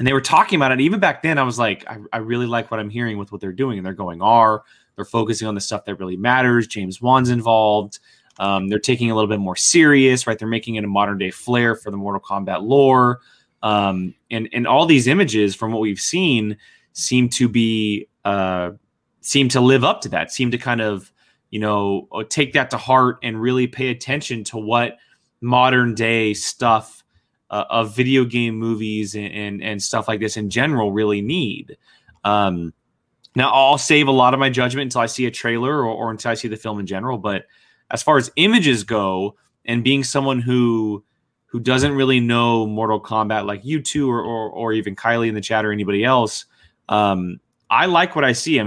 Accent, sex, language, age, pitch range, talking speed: American, male, English, 20-39, 105-125 Hz, 215 wpm